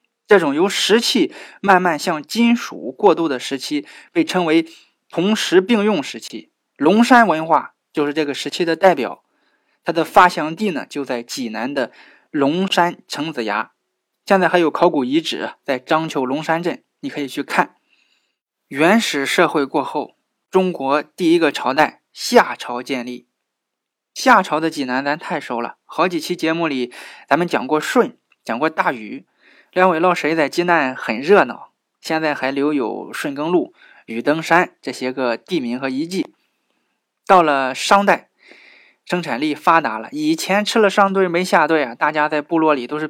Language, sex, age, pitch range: Chinese, male, 20-39, 140-190 Hz